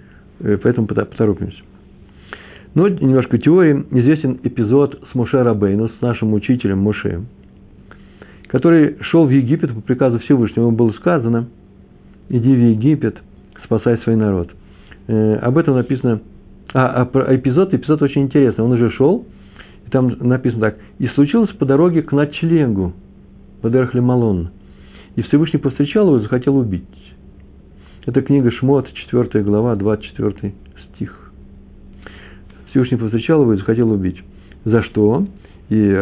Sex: male